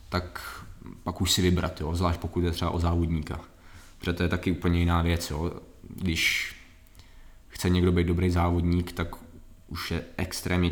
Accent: native